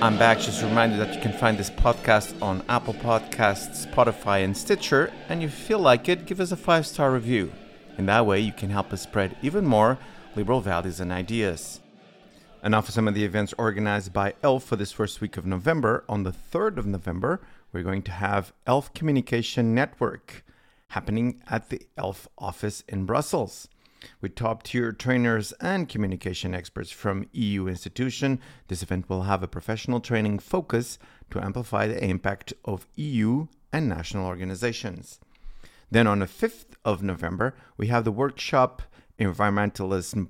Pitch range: 95-125 Hz